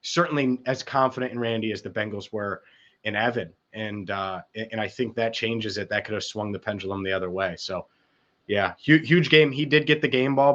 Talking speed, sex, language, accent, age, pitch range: 220 wpm, male, English, American, 30-49, 120-150 Hz